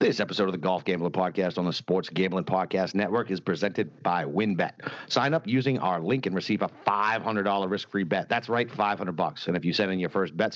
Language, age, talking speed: English, 50-69, 250 wpm